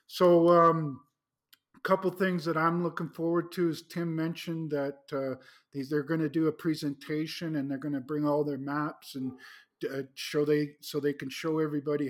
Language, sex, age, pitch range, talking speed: English, male, 50-69, 145-165 Hz, 190 wpm